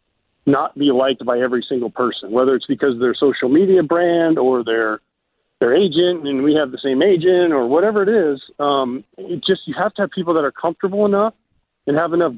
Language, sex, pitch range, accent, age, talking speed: English, male, 145-185 Hz, American, 40-59, 215 wpm